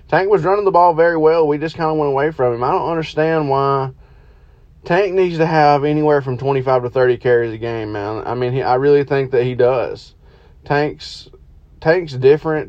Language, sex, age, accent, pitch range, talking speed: English, male, 20-39, American, 125-145 Hz, 210 wpm